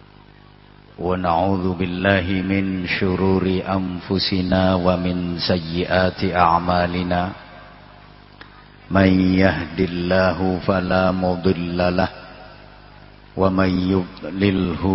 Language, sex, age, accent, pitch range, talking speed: English, male, 50-69, Indonesian, 90-95 Hz, 65 wpm